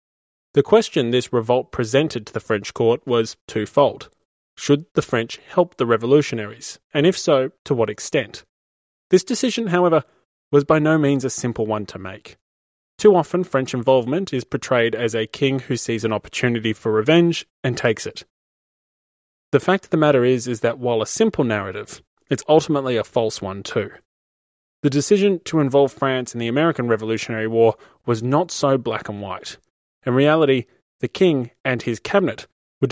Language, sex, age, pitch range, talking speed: English, male, 20-39, 115-155 Hz, 175 wpm